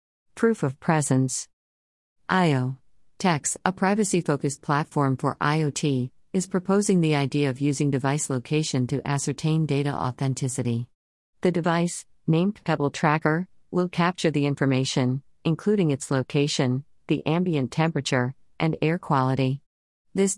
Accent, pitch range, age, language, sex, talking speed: American, 130-160 Hz, 50-69, English, female, 120 wpm